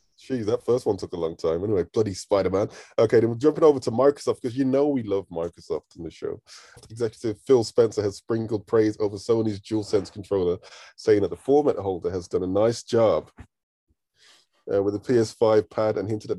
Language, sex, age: English, male, 20-39